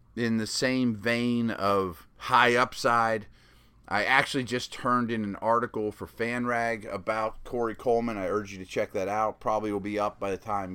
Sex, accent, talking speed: male, American, 190 wpm